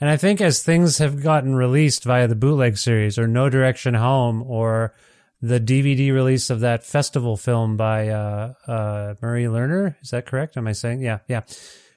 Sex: male